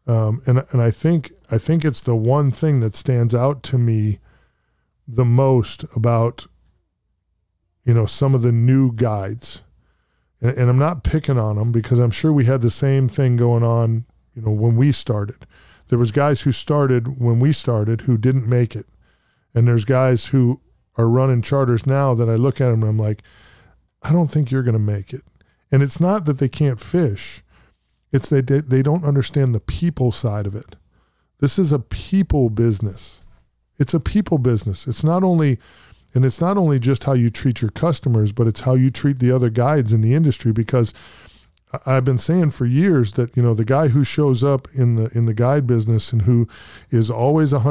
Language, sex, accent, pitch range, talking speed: English, male, American, 115-140 Hz, 200 wpm